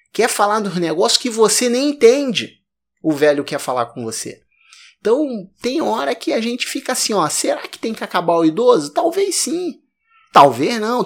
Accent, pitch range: Brazilian, 165-230 Hz